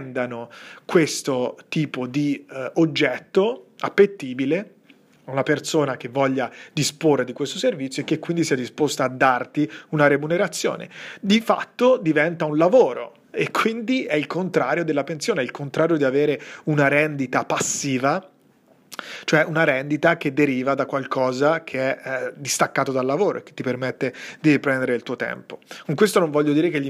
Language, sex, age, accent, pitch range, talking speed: Italian, male, 30-49, native, 135-160 Hz, 165 wpm